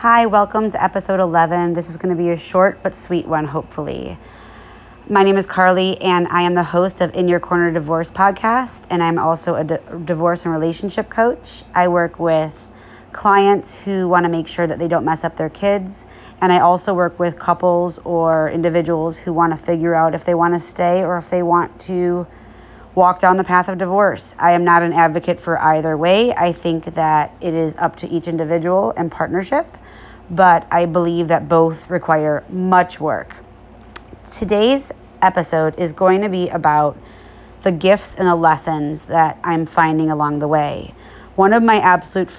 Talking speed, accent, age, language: 190 wpm, American, 30-49, English